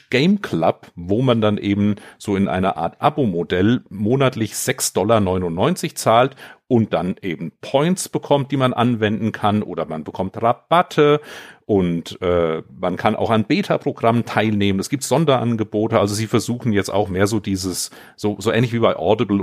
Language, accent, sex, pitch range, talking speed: German, German, male, 100-125 Hz, 165 wpm